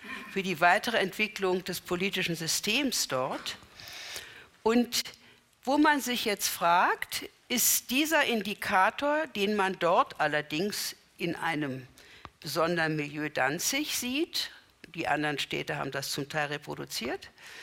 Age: 60-79